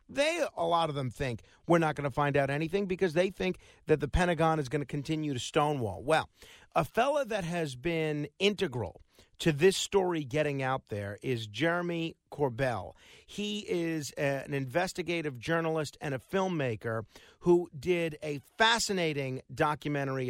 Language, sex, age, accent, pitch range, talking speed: English, male, 50-69, American, 135-175 Hz, 160 wpm